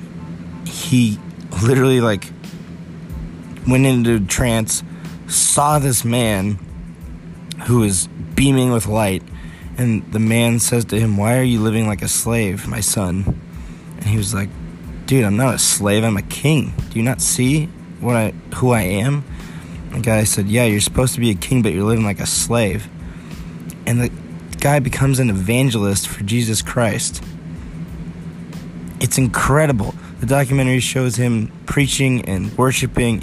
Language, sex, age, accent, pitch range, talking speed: English, male, 20-39, American, 85-120 Hz, 155 wpm